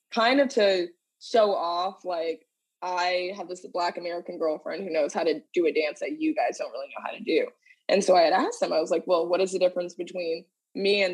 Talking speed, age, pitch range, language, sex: 240 wpm, 20-39, 160-190 Hz, English, female